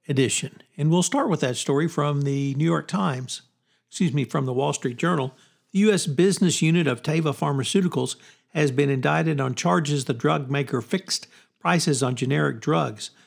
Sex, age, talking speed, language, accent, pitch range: male, 60-79, 175 wpm, English, American, 130-155 Hz